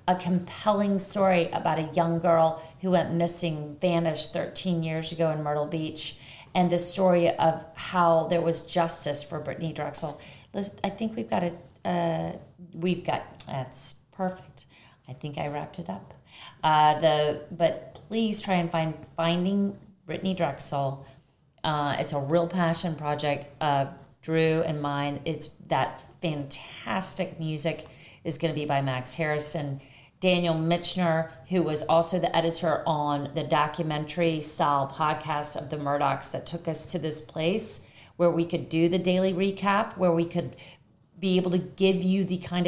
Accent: American